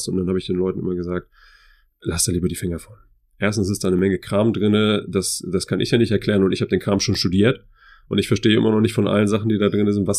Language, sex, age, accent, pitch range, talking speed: German, male, 30-49, German, 95-110 Hz, 290 wpm